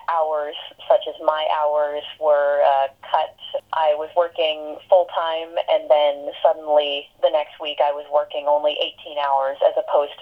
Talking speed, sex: 155 wpm, female